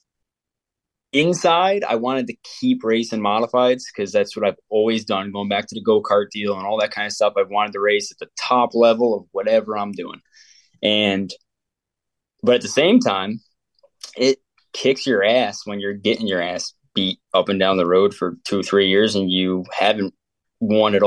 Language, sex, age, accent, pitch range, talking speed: English, male, 20-39, American, 105-125 Hz, 195 wpm